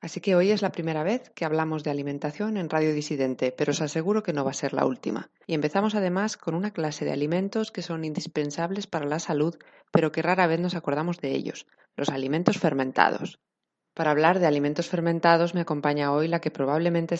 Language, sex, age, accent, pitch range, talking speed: Spanish, female, 20-39, Spanish, 145-180 Hz, 210 wpm